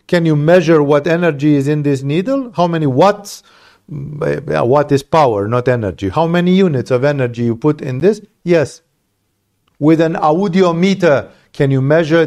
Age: 50-69